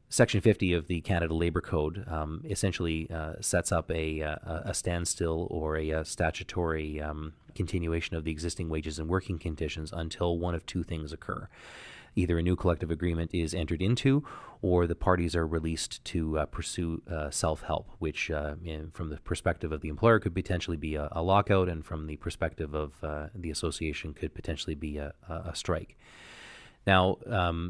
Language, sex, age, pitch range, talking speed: English, male, 30-49, 80-90 Hz, 180 wpm